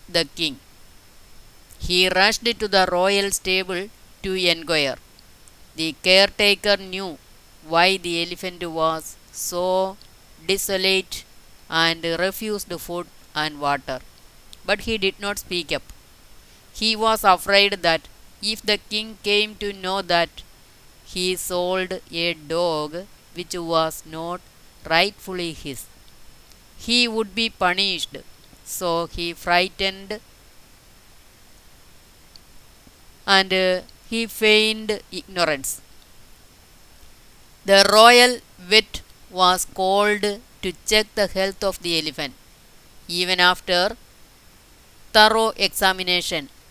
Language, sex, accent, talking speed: Malayalam, female, native, 100 wpm